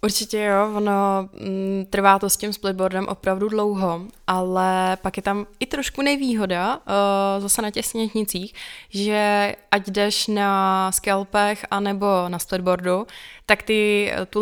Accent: native